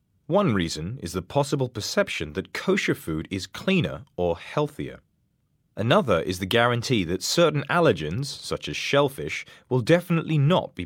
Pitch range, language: 105-165 Hz, Chinese